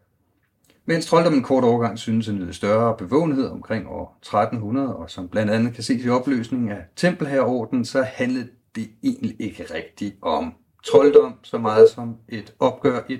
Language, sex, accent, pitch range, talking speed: Danish, male, native, 110-150 Hz, 170 wpm